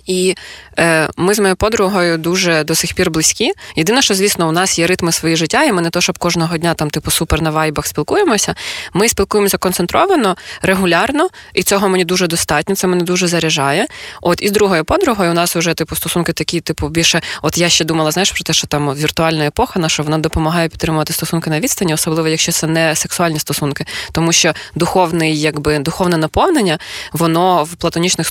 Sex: female